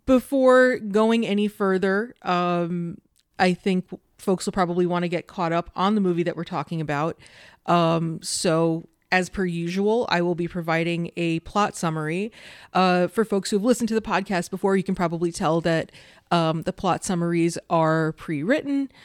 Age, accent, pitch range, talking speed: 30-49, American, 170-210 Hz, 175 wpm